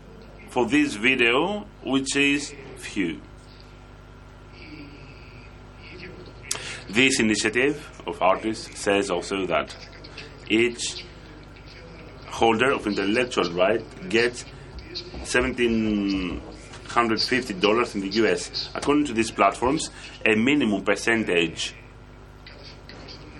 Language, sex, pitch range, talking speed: French, male, 110-135 Hz, 75 wpm